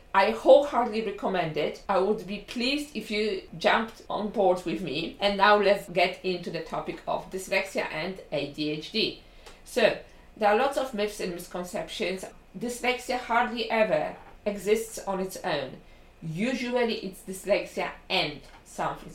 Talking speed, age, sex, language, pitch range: 145 wpm, 50-69, female, English, 180-240 Hz